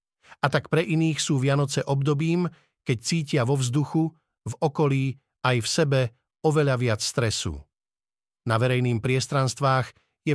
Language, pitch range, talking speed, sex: Slovak, 120-150 Hz, 135 wpm, male